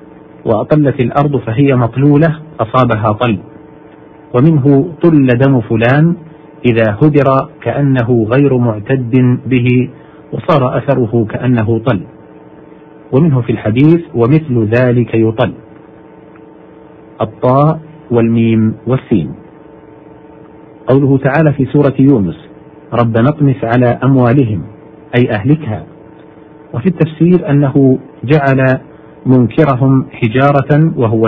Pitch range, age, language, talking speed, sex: 120-150 Hz, 50-69, Arabic, 90 wpm, male